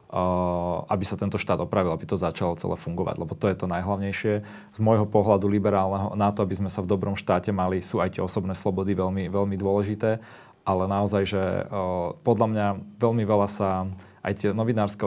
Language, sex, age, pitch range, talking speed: Slovak, male, 30-49, 95-105 Hz, 195 wpm